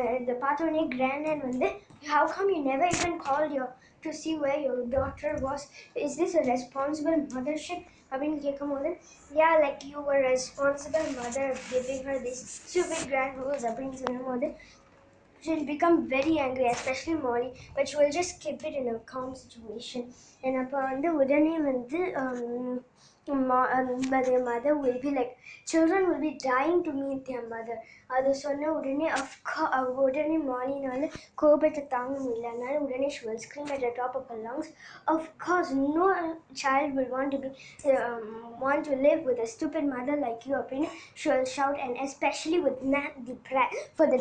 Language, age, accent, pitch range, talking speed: Tamil, 20-39, native, 255-305 Hz, 175 wpm